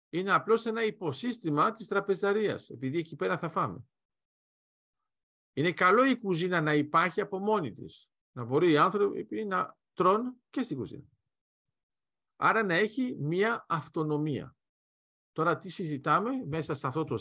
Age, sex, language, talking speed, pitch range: 50-69, male, Greek, 145 wpm, 115-185 Hz